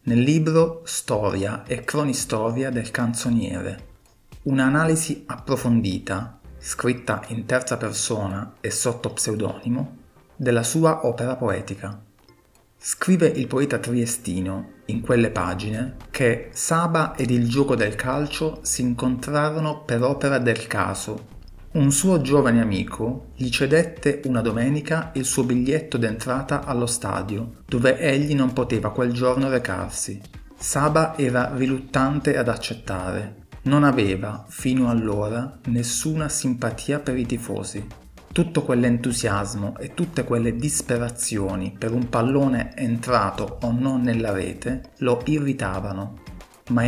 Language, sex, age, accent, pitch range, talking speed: Italian, male, 40-59, native, 110-135 Hz, 120 wpm